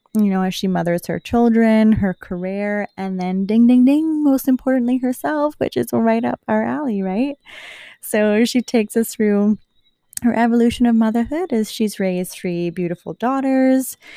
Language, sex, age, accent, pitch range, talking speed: English, female, 20-39, American, 180-220 Hz, 165 wpm